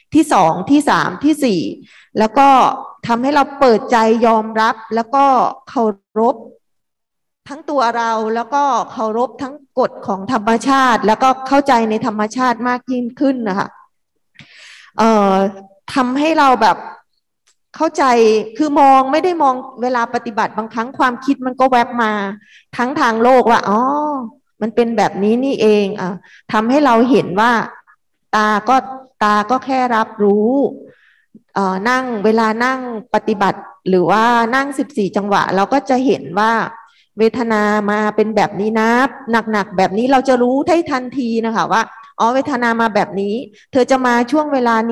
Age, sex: 20-39, female